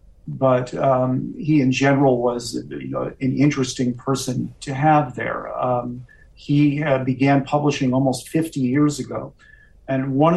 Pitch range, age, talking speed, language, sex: 120-135 Hz, 50-69, 145 wpm, English, male